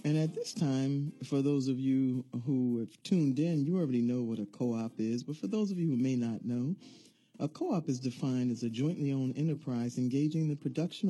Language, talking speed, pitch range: English, 215 wpm, 125-150 Hz